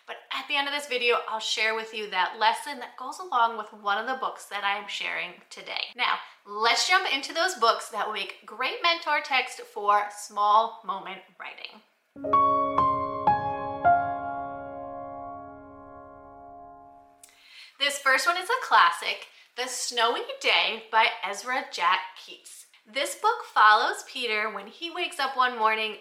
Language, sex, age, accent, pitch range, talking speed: English, female, 30-49, American, 205-265 Hz, 150 wpm